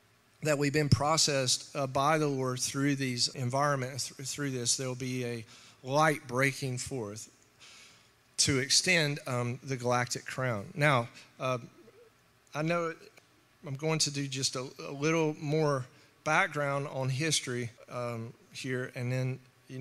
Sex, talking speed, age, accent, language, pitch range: male, 140 wpm, 40-59, American, English, 125-155 Hz